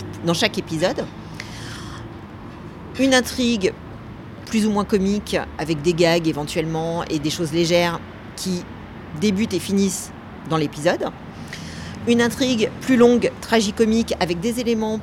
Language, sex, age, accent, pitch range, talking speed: French, female, 40-59, French, 150-200 Hz, 125 wpm